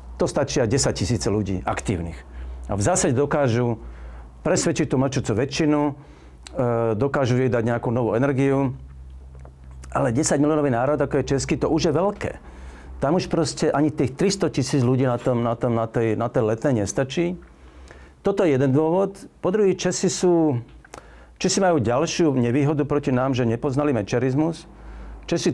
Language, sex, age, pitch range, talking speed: Slovak, male, 50-69, 105-150 Hz, 155 wpm